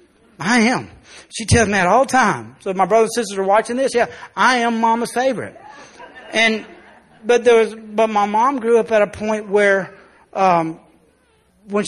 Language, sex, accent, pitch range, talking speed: English, male, American, 200-240 Hz, 185 wpm